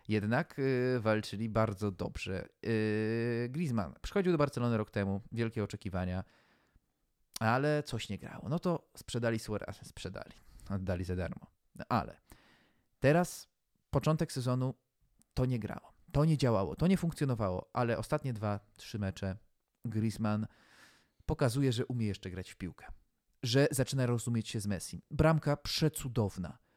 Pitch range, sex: 95-130 Hz, male